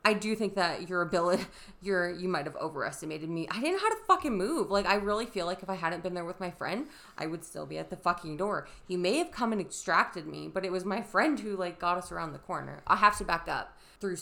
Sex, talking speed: female, 275 wpm